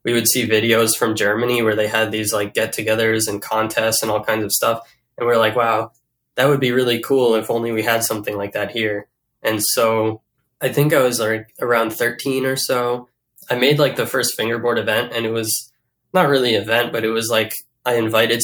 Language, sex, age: English, male, 10-29